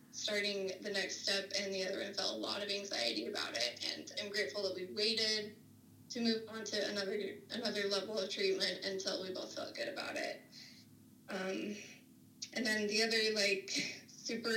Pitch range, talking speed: 195-220 Hz, 180 wpm